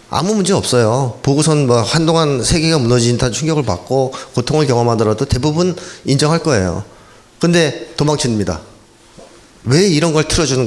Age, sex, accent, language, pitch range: 40-59, male, native, Korean, 110-155 Hz